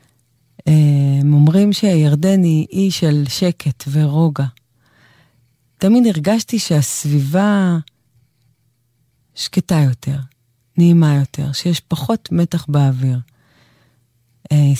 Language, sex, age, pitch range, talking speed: English, female, 30-49, 130-165 Hz, 75 wpm